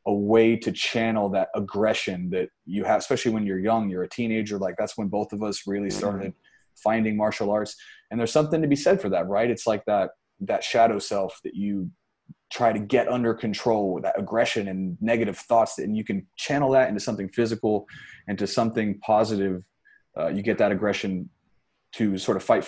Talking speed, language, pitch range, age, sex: 200 wpm, English, 100-120 Hz, 20-39, male